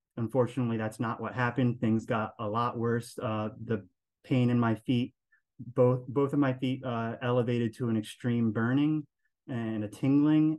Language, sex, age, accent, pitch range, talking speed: English, male, 30-49, American, 110-125 Hz, 170 wpm